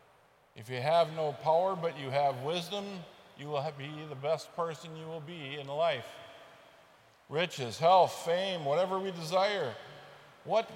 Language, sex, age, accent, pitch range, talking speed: English, male, 50-69, American, 140-185 Hz, 150 wpm